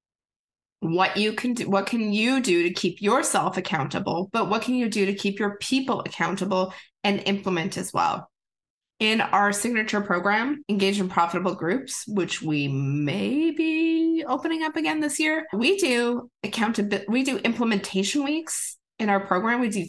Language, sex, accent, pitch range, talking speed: English, female, American, 185-240 Hz, 165 wpm